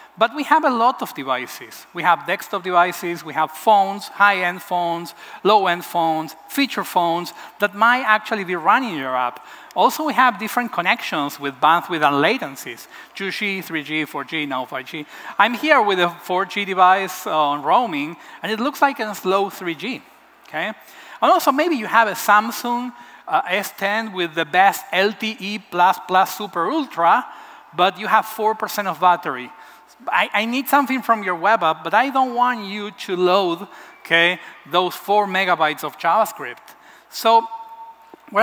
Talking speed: 160 wpm